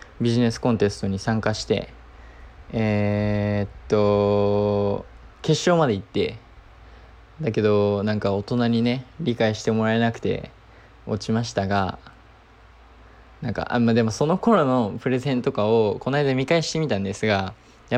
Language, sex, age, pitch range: Japanese, male, 20-39, 100-125 Hz